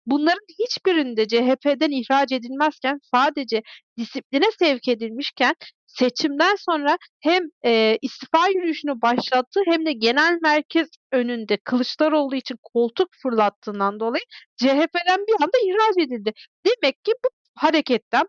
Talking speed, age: 115 wpm, 40-59